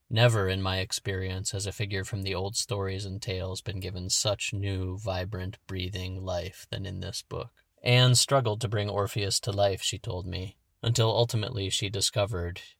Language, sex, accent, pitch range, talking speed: English, male, American, 95-110 Hz, 180 wpm